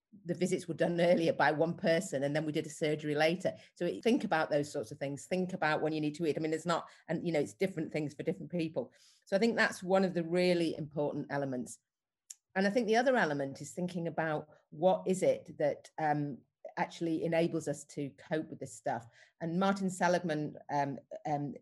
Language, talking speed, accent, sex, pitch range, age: English, 220 wpm, British, female, 150-180 Hz, 40-59